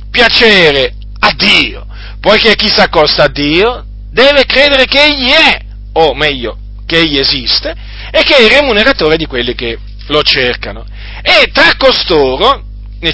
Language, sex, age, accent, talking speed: Italian, male, 40-59, native, 150 wpm